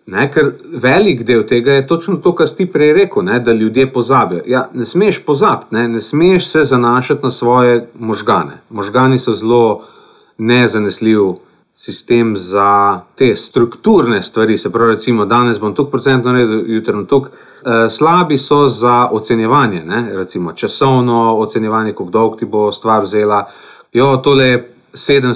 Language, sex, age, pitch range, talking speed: English, male, 30-49, 110-140 Hz, 150 wpm